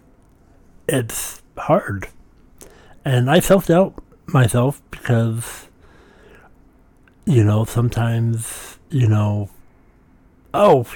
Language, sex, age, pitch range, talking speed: English, male, 60-79, 100-130 Hz, 70 wpm